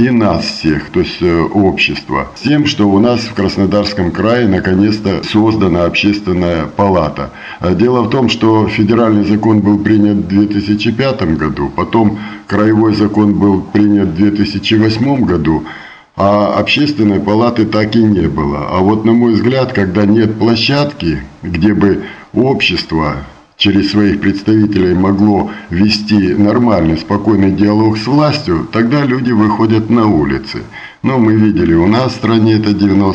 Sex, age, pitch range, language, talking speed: male, 50-69, 95-110 Hz, Russian, 145 wpm